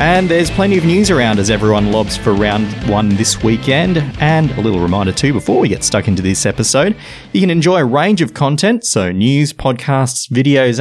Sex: male